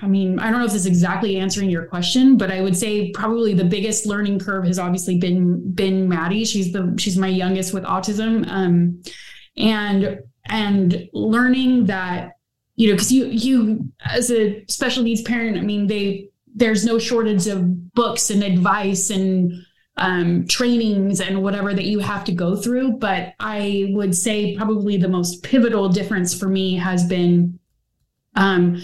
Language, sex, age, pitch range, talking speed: English, female, 20-39, 180-215 Hz, 175 wpm